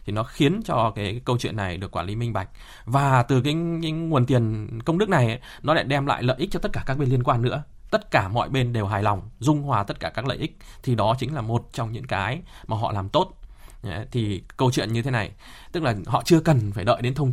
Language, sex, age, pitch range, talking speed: Vietnamese, male, 20-39, 110-140 Hz, 270 wpm